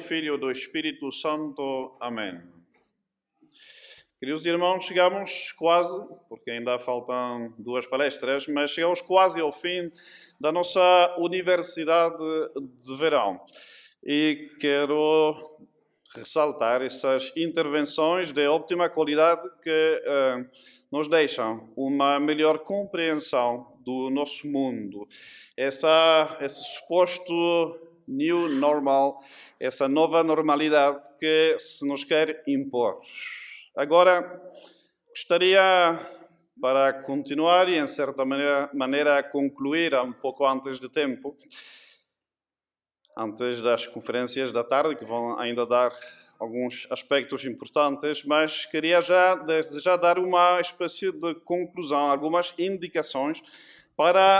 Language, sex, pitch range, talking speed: Portuguese, male, 135-175 Hz, 105 wpm